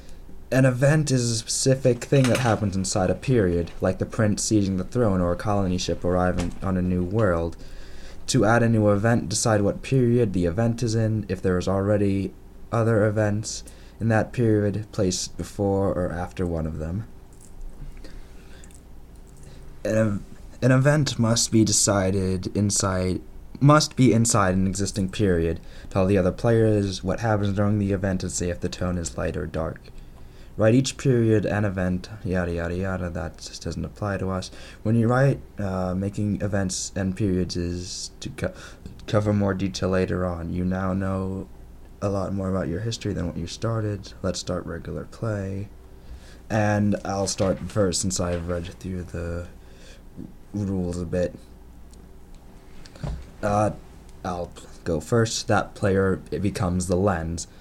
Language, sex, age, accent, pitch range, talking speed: English, male, 20-39, American, 90-105 Hz, 155 wpm